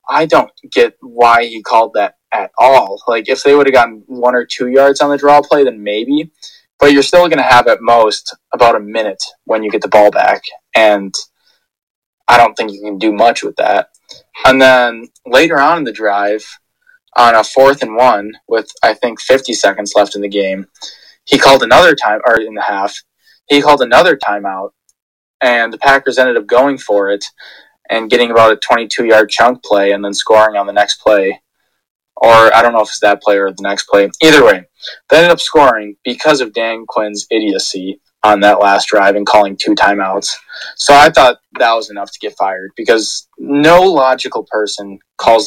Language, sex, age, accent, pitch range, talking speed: English, male, 20-39, American, 100-130 Hz, 200 wpm